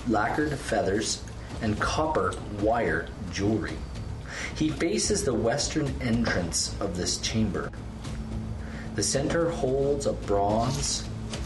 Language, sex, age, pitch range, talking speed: English, male, 40-59, 100-115 Hz, 100 wpm